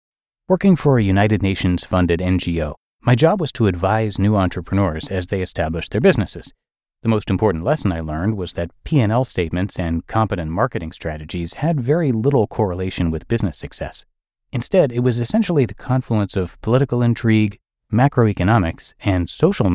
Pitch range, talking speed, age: 90-125 Hz, 155 wpm, 30-49